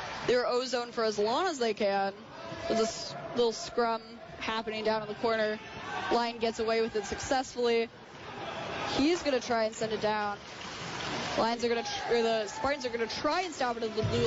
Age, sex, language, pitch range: 20-39, female, English, 220-250 Hz